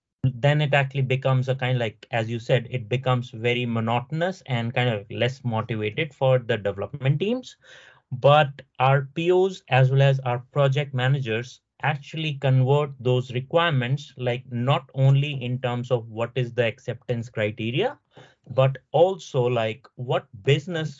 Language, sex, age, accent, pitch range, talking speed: English, male, 30-49, Indian, 115-135 Hz, 150 wpm